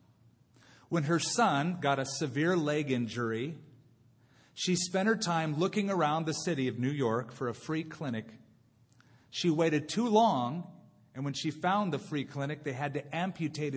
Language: English